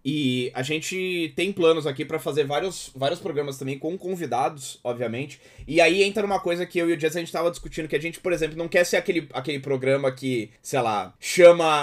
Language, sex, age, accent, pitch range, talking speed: Portuguese, male, 20-39, Brazilian, 130-170 Hz, 225 wpm